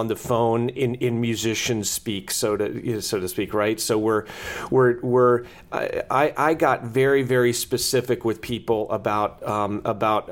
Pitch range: 110-125 Hz